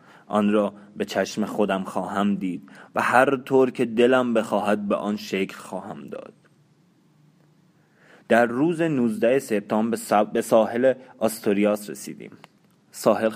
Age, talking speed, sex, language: 30-49, 120 wpm, male, Persian